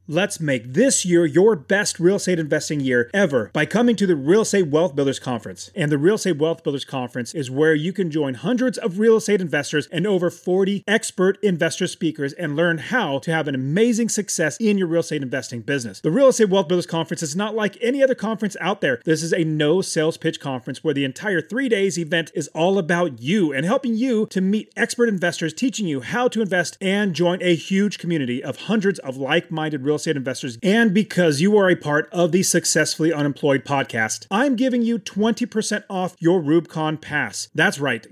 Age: 30-49